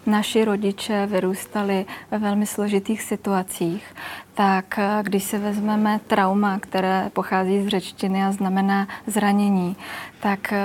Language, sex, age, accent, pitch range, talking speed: Czech, female, 20-39, native, 185-200 Hz, 115 wpm